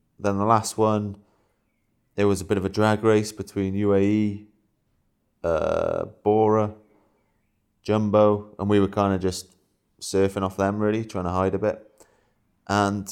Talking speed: 150 wpm